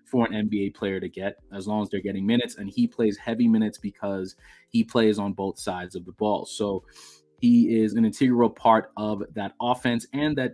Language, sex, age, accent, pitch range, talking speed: English, male, 20-39, American, 100-120 Hz, 210 wpm